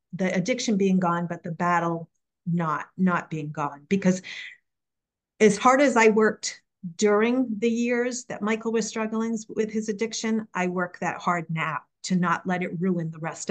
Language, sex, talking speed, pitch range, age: English, female, 175 wpm, 170-210 Hz, 50-69